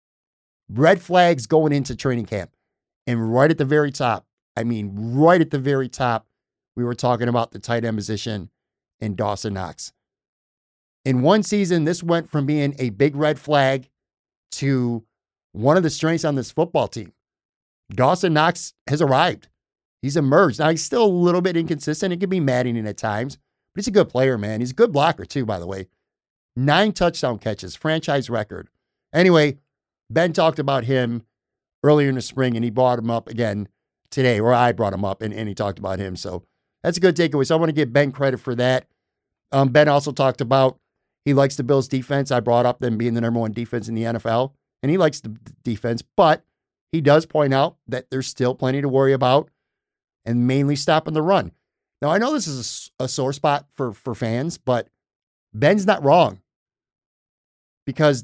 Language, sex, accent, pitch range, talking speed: English, male, American, 120-150 Hz, 195 wpm